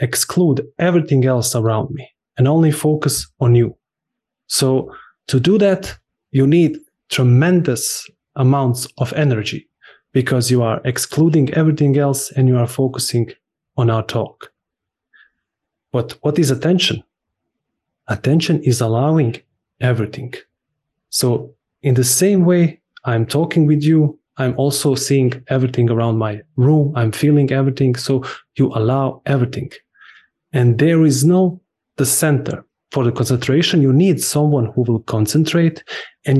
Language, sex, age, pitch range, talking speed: English, male, 20-39, 120-150 Hz, 130 wpm